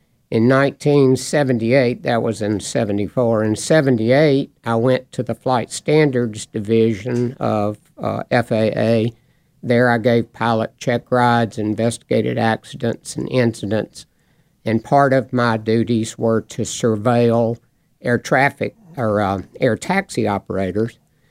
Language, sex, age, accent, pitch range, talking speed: English, male, 60-79, American, 110-130 Hz, 120 wpm